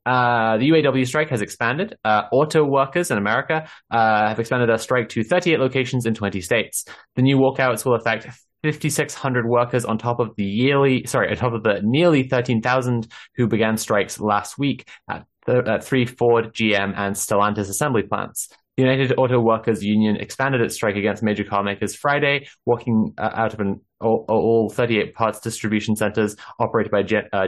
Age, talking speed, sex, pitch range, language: 20-39, 180 wpm, male, 105-125 Hz, English